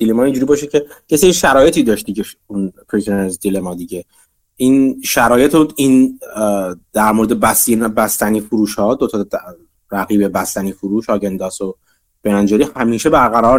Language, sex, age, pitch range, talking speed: Persian, male, 30-49, 105-140 Hz, 145 wpm